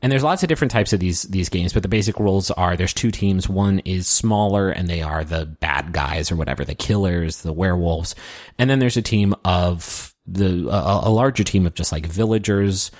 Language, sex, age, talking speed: English, male, 30-49, 210 wpm